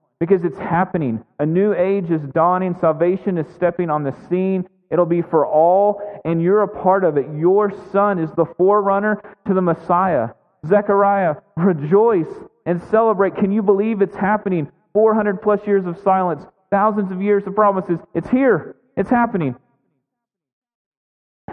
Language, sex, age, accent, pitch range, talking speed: English, male, 30-49, American, 135-195 Hz, 155 wpm